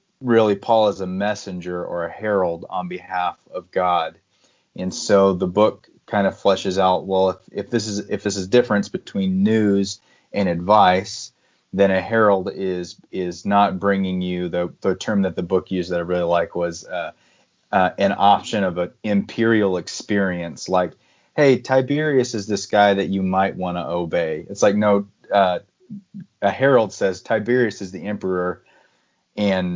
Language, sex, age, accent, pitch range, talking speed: English, male, 30-49, American, 90-105 Hz, 170 wpm